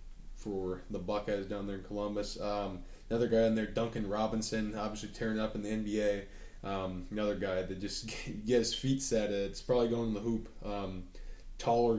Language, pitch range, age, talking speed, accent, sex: English, 100-115 Hz, 20-39, 185 wpm, American, male